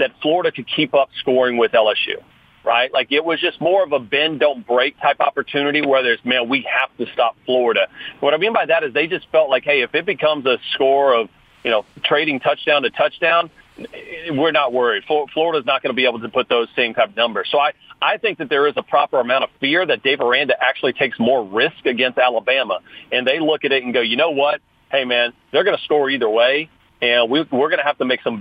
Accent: American